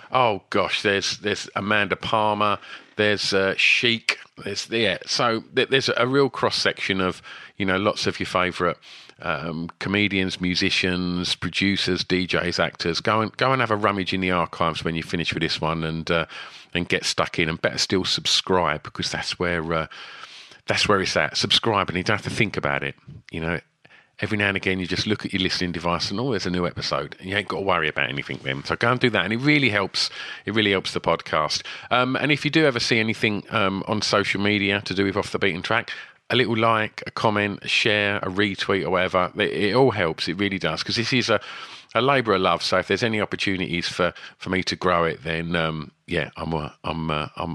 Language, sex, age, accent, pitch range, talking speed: English, male, 40-59, British, 85-110 Hz, 225 wpm